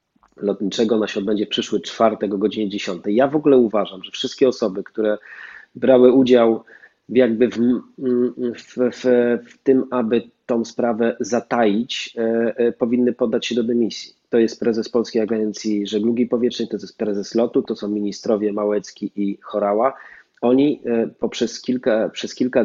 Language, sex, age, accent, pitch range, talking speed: Polish, male, 30-49, native, 100-120 Hz, 150 wpm